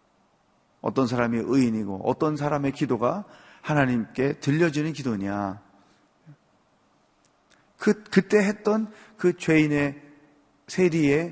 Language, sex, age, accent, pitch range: Korean, male, 40-59, native, 150-245 Hz